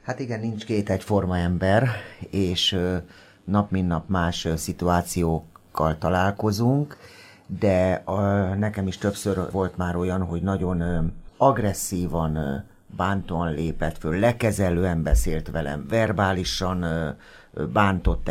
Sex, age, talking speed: male, 50-69, 100 wpm